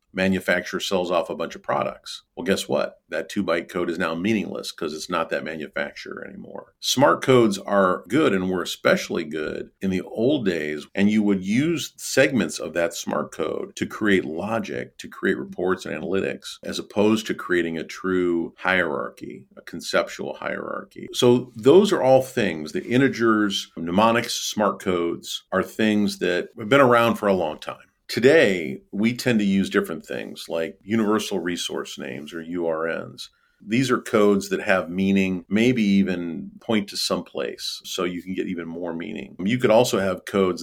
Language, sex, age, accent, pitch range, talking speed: English, male, 50-69, American, 85-110 Hz, 175 wpm